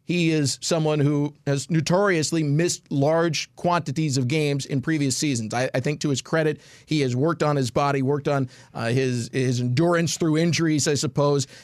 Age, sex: 40-59, male